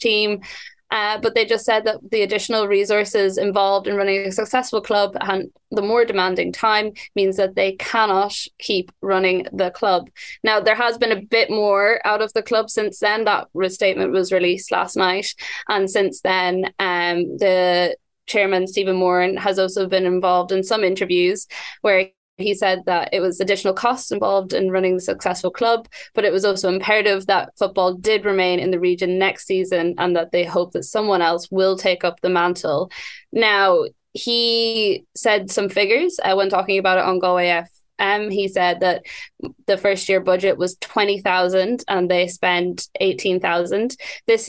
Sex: female